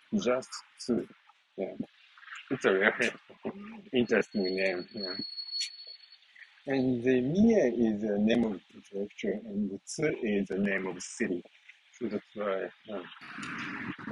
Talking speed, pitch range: 135 wpm, 110-150 Hz